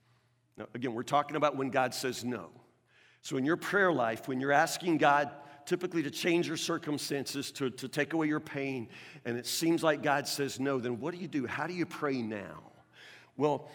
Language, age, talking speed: English, 50-69, 200 wpm